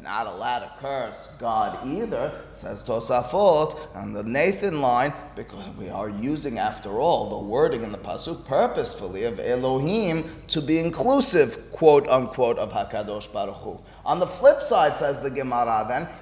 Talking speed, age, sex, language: 160 wpm, 30-49, male, English